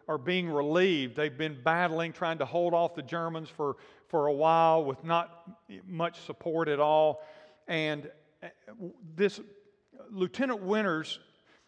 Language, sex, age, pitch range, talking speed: English, male, 50-69, 160-220 Hz, 135 wpm